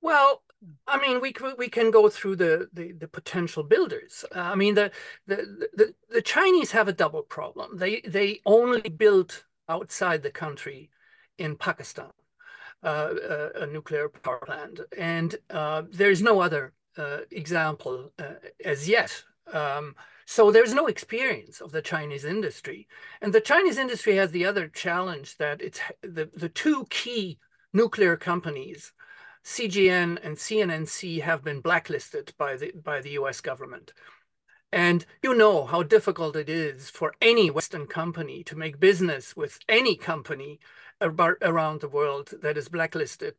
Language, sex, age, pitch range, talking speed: English, male, 50-69, 160-245 Hz, 155 wpm